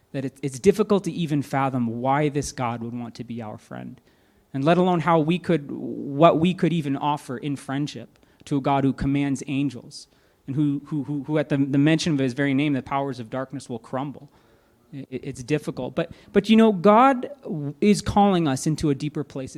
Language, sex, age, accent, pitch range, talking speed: English, male, 30-49, American, 125-170 Hz, 200 wpm